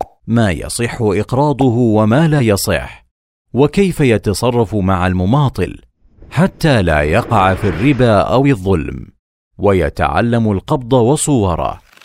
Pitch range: 95-145 Hz